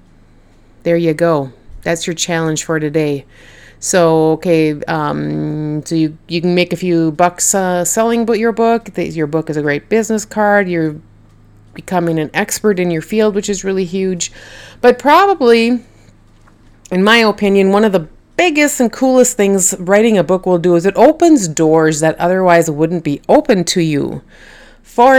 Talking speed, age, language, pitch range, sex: 170 wpm, 30-49, English, 160-210 Hz, female